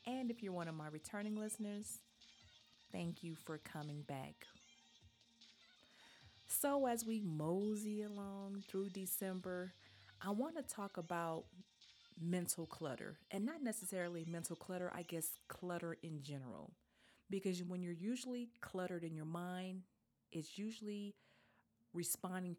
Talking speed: 130 wpm